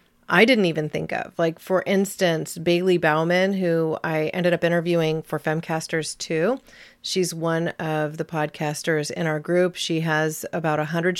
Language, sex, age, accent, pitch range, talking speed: English, female, 30-49, American, 160-190 Hz, 160 wpm